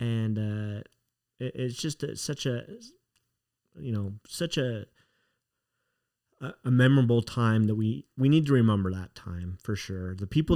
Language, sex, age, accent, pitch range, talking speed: English, male, 30-49, American, 105-125 Hz, 160 wpm